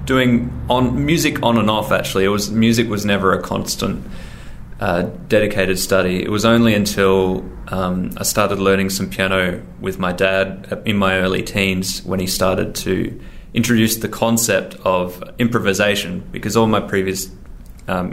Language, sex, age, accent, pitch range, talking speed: English, male, 20-39, Australian, 95-105 Hz, 160 wpm